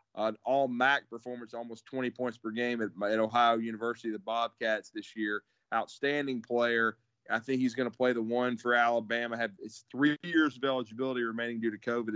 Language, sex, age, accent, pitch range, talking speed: English, male, 30-49, American, 115-125 Hz, 190 wpm